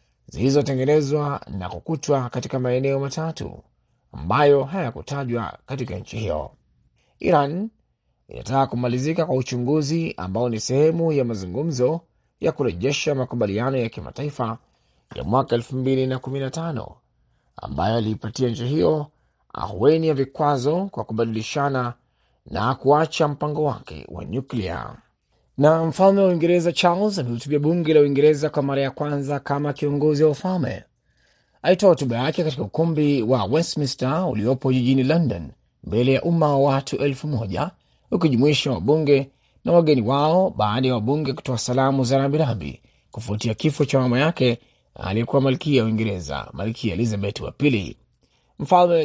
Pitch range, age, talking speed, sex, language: 120-155 Hz, 30-49, 125 wpm, male, Swahili